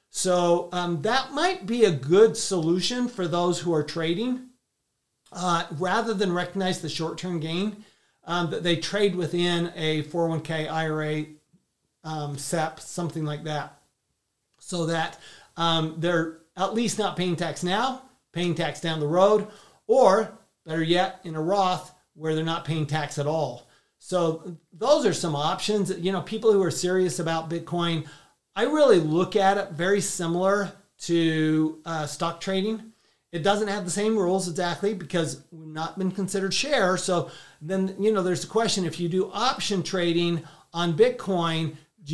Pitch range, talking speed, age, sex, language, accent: 160-195 Hz, 165 wpm, 40-59, male, English, American